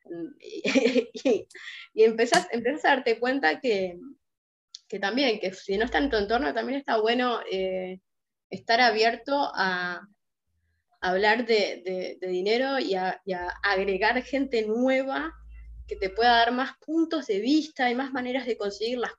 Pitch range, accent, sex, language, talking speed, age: 190-255 Hz, Argentinian, female, Spanish, 165 wpm, 20-39